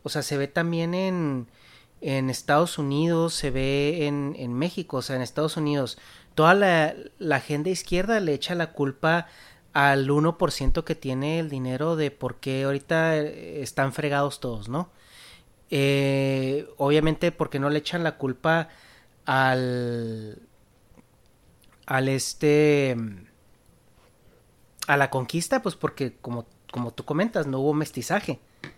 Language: Spanish